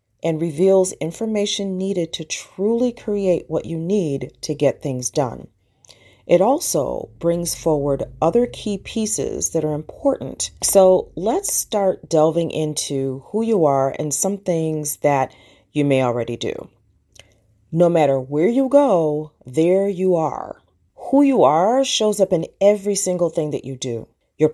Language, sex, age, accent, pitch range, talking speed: English, female, 40-59, American, 140-205 Hz, 150 wpm